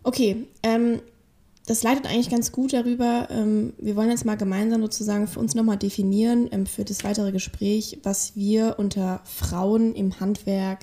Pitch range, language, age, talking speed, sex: 190-215 Hz, German, 10-29, 165 wpm, female